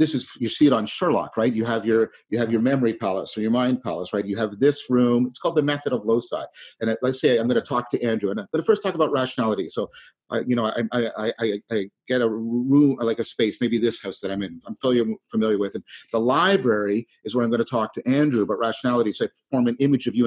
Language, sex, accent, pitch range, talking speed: English, male, American, 110-140 Hz, 265 wpm